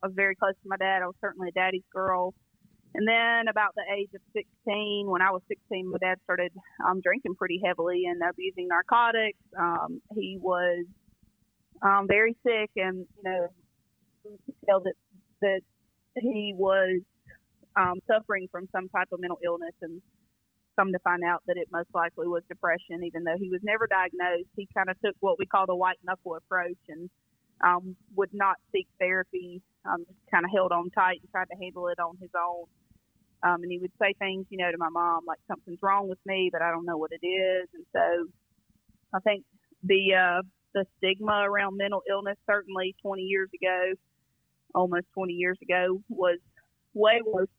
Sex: female